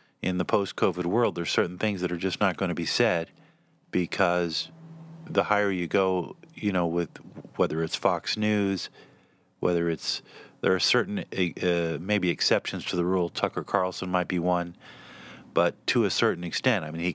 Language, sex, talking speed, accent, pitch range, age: English, male, 180 wpm, American, 90-100 Hz, 50-69